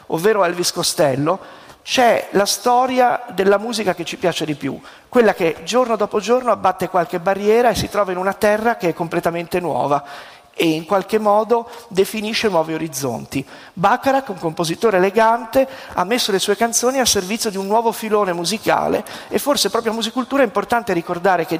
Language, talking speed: Italian, 175 wpm